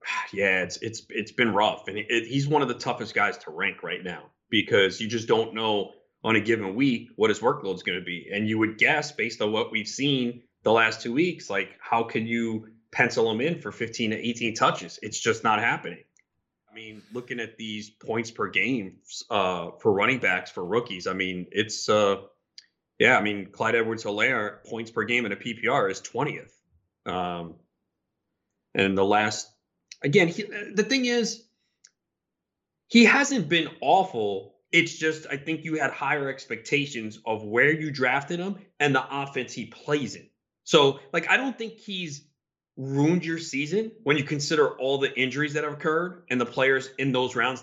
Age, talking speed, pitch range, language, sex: 30-49, 190 wpm, 115-165 Hz, English, male